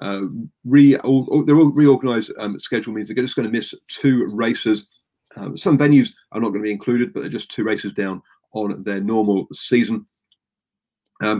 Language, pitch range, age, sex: English, 105-130 Hz, 40-59, male